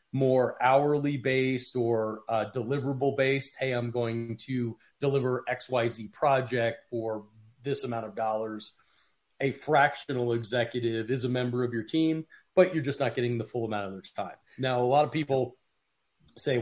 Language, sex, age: English, male, 40-59